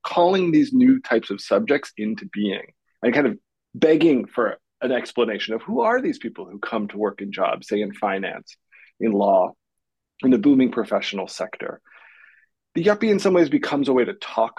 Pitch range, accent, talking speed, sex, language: 110-170 Hz, American, 190 wpm, male, English